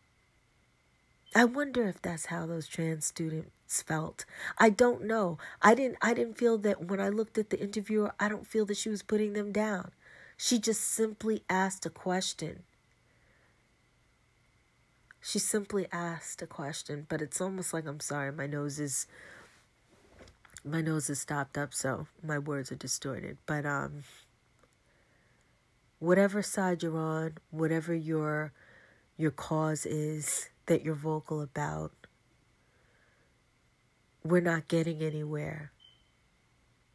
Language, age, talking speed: English, 40-59, 135 wpm